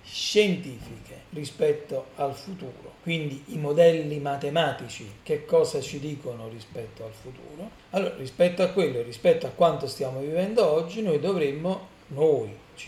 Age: 40-59